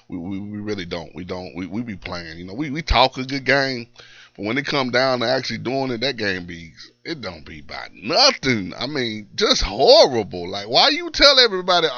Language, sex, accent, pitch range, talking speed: English, male, American, 100-150 Hz, 225 wpm